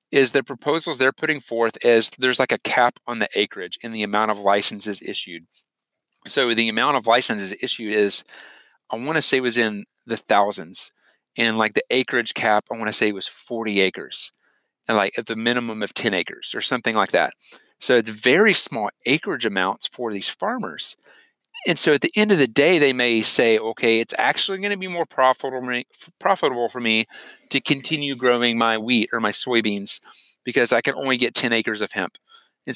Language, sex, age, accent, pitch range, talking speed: English, male, 40-59, American, 110-130 Hz, 190 wpm